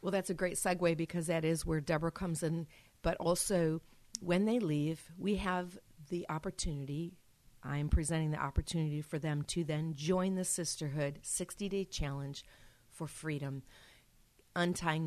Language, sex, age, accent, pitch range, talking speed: English, female, 50-69, American, 140-165 Hz, 150 wpm